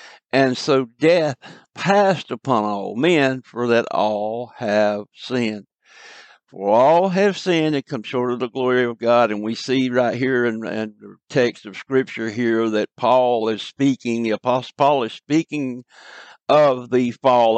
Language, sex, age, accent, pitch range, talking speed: English, male, 60-79, American, 110-140 Hz, 160 wpm